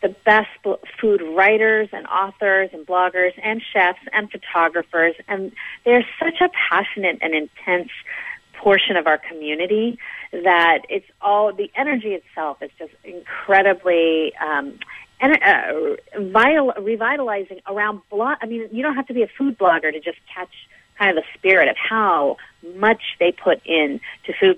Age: 40-59